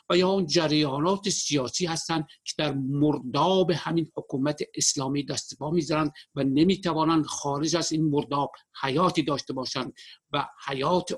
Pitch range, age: 140-175 Hz, 60-79